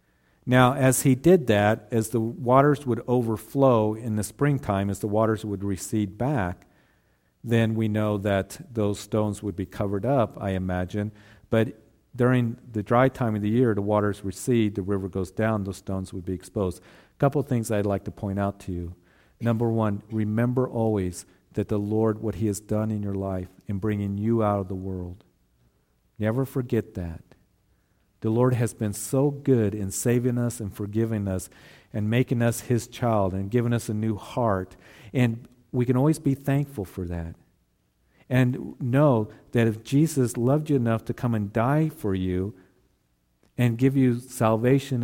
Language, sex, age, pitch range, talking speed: English, male, 50-69, 100-125 Hz, 180 wpm